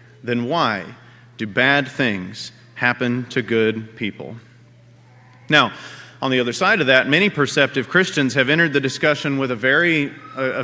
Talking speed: 160 wpm